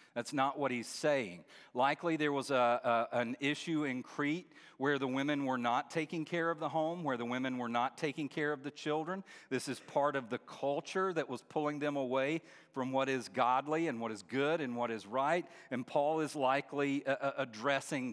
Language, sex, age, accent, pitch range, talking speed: English, male, 50-69, American, 125-155 Hz, 210 wpm